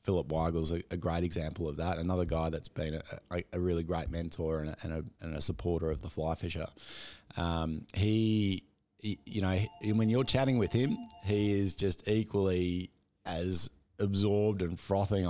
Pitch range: 85-105 Hz